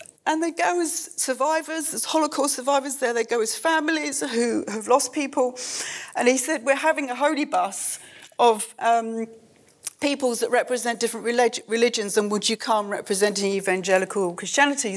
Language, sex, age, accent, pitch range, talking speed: English, female, 40-59, British, 220-265 Hz, 155 wpm